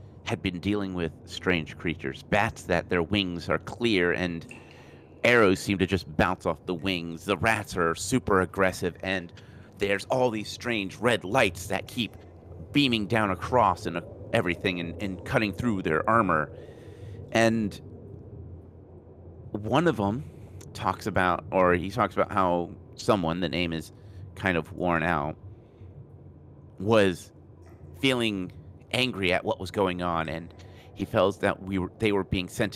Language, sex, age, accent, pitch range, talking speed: English, male, 30-49, American, 90-110 Hz, 155 wpm